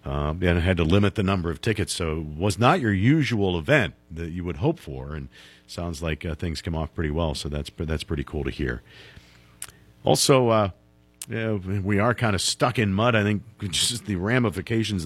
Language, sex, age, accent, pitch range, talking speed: English, male, 50-69, American, 80-110 Hz, 205 wpm